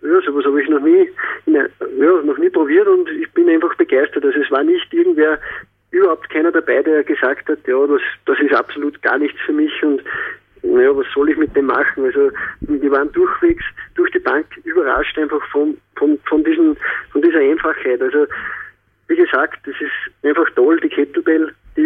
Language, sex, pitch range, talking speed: German, male, 290-385 Hz, 190 wpm